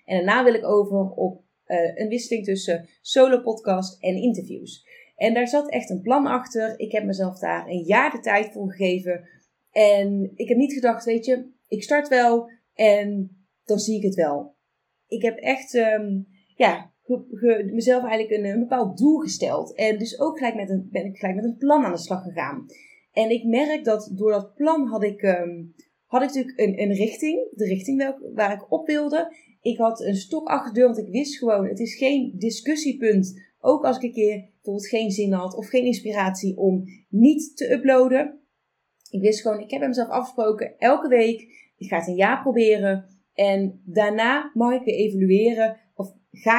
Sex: female